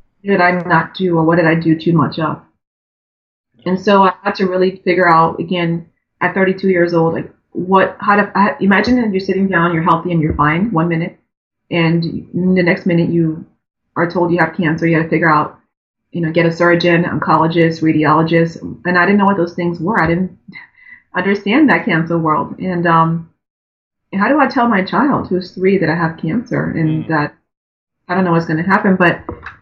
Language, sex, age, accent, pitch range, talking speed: English, female, 30-49, American, 160-185 Hz, 205 wpm